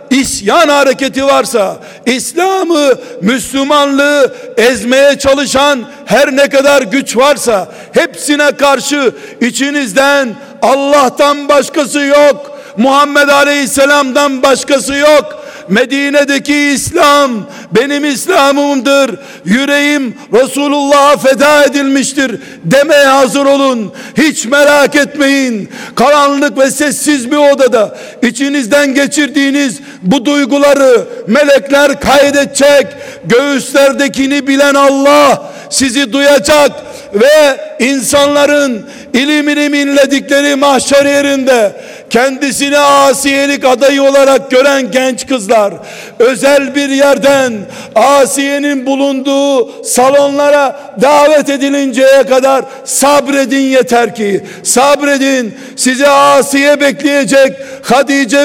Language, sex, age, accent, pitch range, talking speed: Turkish, male, 60-79, native, 265-285 Hz, 85 wpm